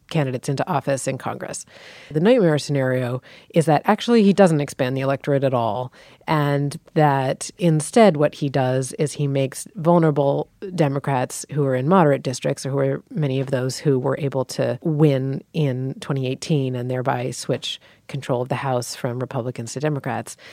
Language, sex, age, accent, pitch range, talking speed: English, female, 30-49, American, 135-165 Hz, 170 wpm